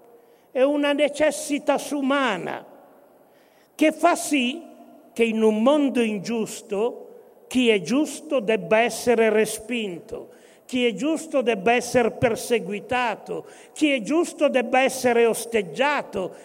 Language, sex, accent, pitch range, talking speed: Italian, male, native, 235-305 Hz, 110 wpm